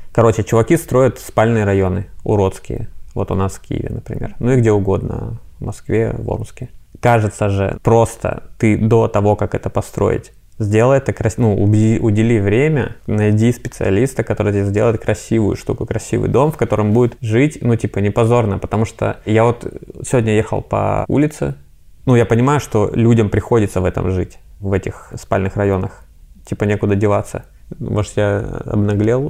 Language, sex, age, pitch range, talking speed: Russian, male, 20-39, 100-115 Hz, 160 wpm